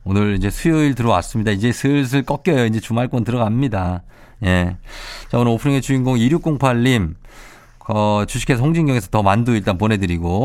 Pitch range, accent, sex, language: 105-145 Hz, native, male, Korean